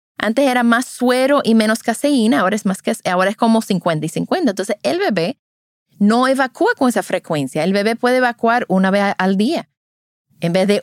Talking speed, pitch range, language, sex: 200 wpm, 160-230 Hz, Spanish, female